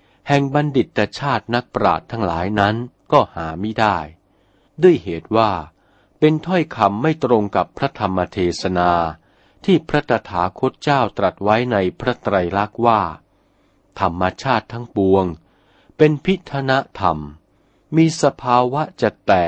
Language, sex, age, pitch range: Thai, male, 60-79, 95-140 Hz